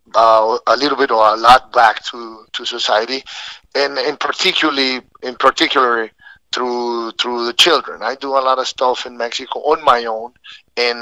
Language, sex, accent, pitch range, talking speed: English, male, Mexican, 110-125 Hz, 175 wpm